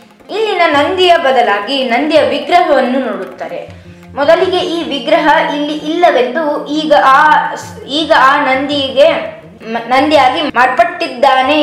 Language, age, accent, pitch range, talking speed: Kannada, 20-39, native, 255-310 Hz, 95 wpm